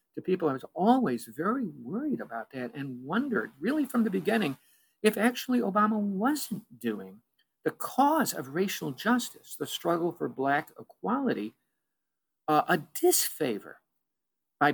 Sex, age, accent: male, 50-69, American